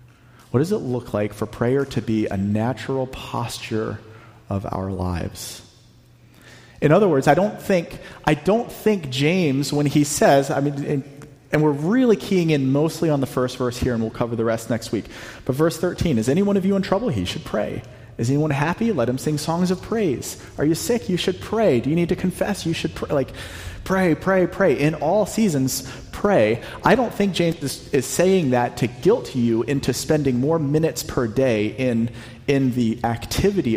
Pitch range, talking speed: 115-150 Hz, 200 wpm